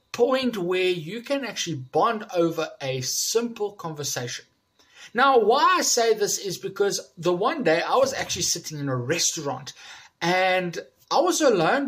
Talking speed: 155 wpm